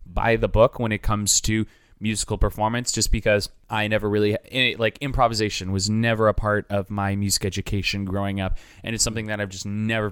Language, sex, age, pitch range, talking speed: English, male, 20-39, 105-120 Hz, 195 wpm